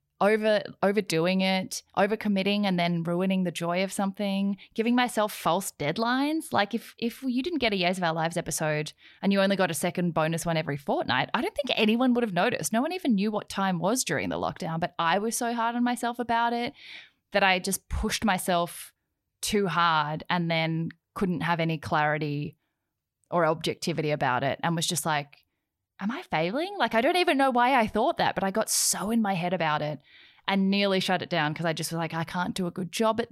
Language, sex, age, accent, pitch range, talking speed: English, female, 10-29, Australian, 165-220 Hz, 220 wpm